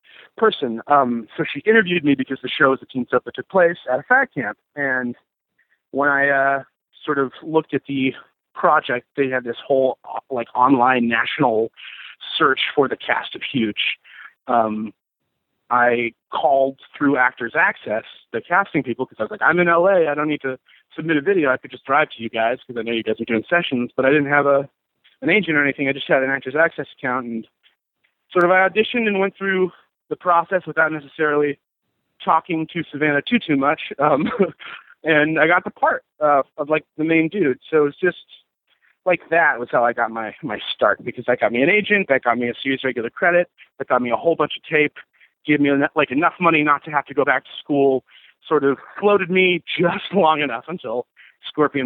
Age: 30-49